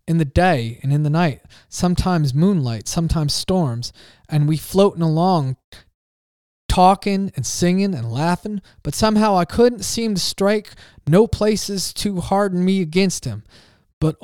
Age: 20-39